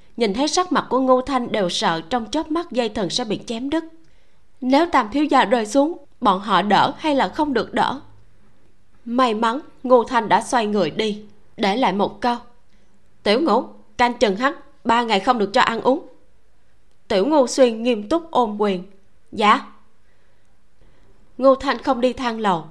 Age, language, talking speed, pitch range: 20-39, Vietnamese, 185 wpm, 195-270 Hz